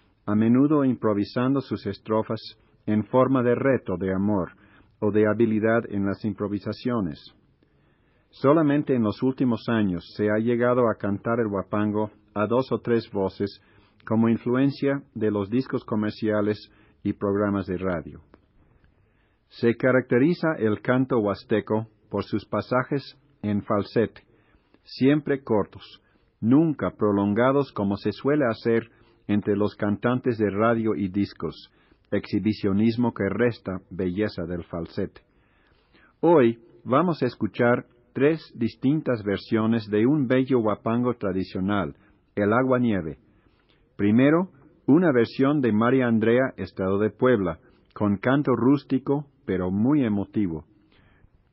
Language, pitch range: Spanish, 100-125 Hz